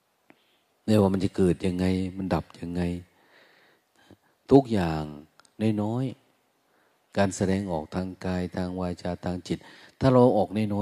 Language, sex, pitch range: Thai, male, 85-110 Hz